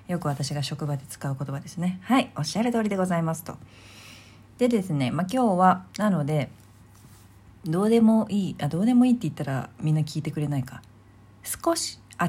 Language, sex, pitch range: Japanese, female, 135-215 Hz